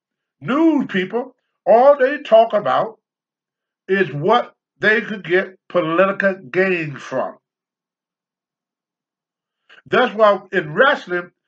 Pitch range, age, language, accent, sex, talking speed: 180-245 Hz, 50-69, English, American, male, 95 wpm